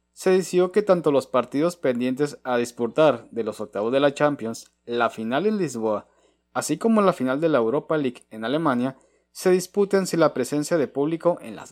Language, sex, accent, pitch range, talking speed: Spanish, male, Mexican, 125-165 Hz, 195 wpm